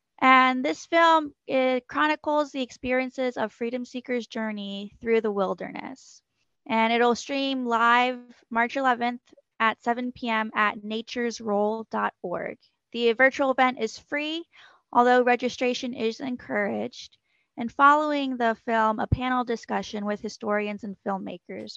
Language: English